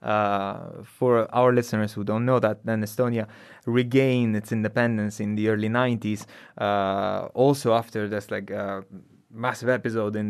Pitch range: 105-125 Hz